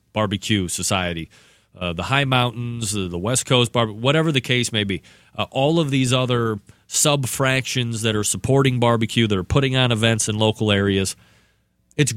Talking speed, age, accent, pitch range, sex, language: 170 wpm, 30-49, American, 105-135 Hz, male, English